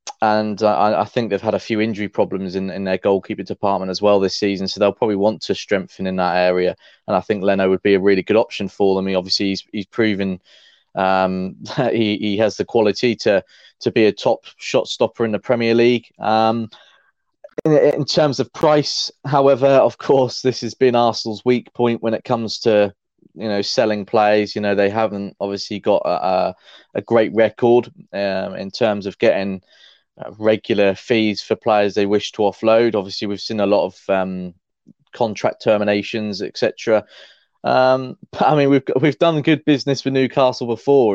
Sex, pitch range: male, 100-120 Hz